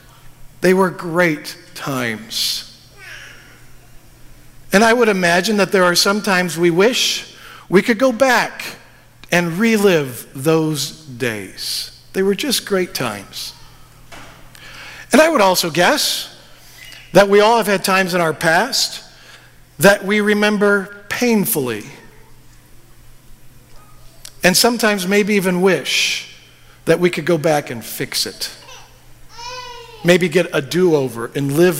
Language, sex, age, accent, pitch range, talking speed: English, male, 50-69, American, 150-210 Hz, 125 wpm